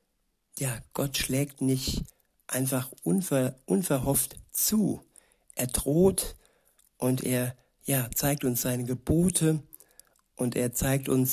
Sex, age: male, 60-79